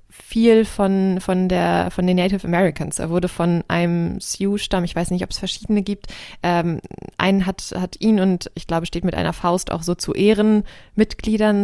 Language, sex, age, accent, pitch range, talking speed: German, female, 20-39, German, 170-200 Hz, 195 wpm